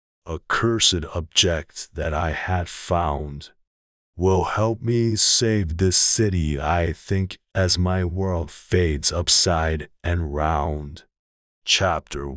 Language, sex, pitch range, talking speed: English, male, 75-100 Hz, 110 wpm